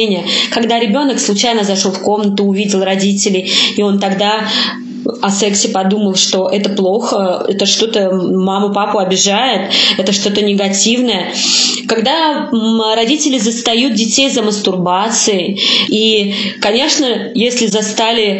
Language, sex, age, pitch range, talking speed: Russian, female, 20-39, 205-265 Hz, 110 wpm